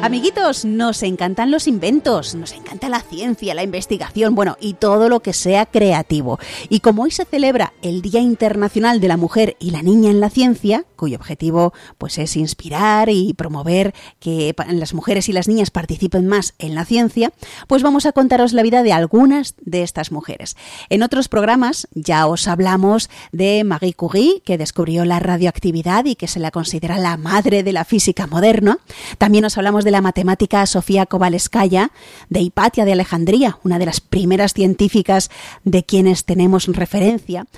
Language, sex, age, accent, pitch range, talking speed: Spanish, female, 30-49, Spanish, 175-220 Hz, 175 wpm